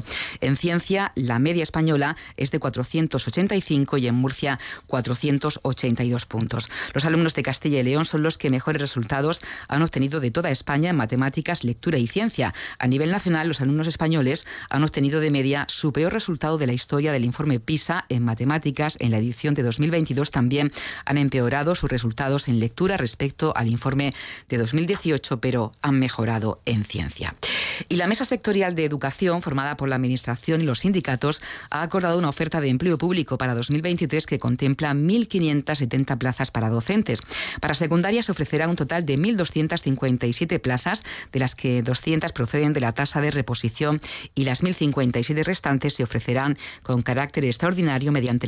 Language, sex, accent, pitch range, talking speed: Spanish, female, Spanish, 125-160 Hz, 165 wpm